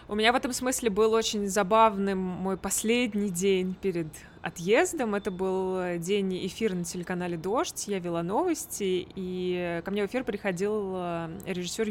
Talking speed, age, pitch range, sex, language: 150 wpm, 20-39, 180-235 Hz, female, Russian